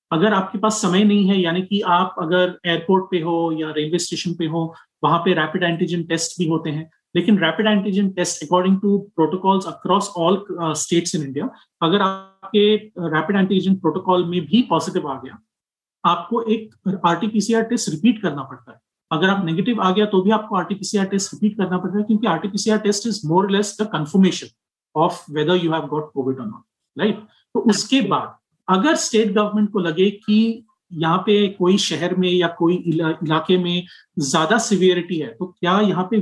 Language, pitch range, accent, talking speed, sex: Hindi, 165-205 Hz, native, 185 wpm, male